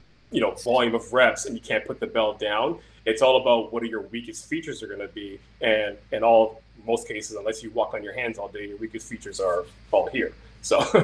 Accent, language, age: American, English, 30-49